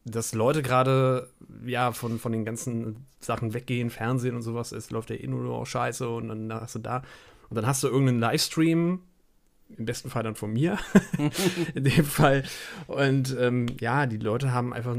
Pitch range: 110-125 Hz